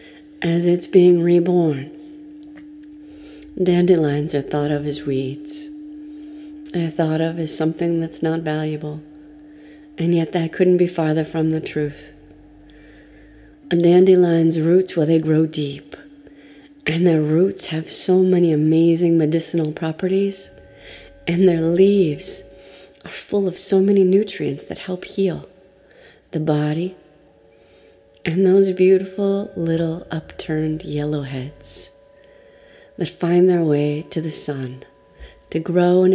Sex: female